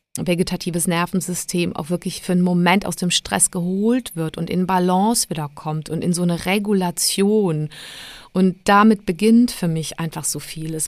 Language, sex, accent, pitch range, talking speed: German, female, German, 170-195 Hz, 165 wpm